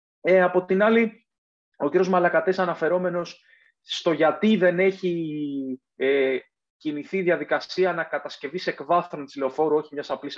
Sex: male